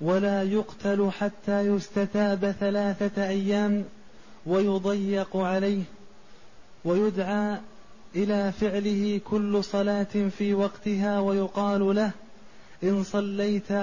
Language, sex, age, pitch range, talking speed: Arabic, male, 30-49, 195-205 Hz, 80 wpm